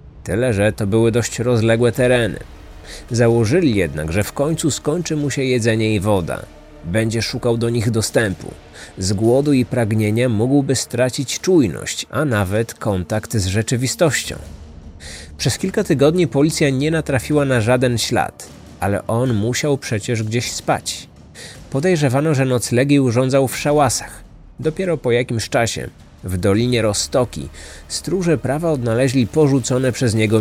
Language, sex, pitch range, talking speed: Polish, male, 105-135 Hz, 135 wpm